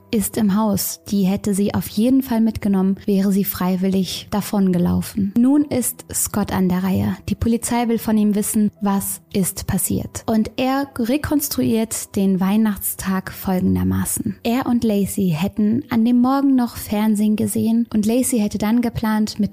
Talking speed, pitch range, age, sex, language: 155 wpm, 195-240 Hz, 20-39, female, German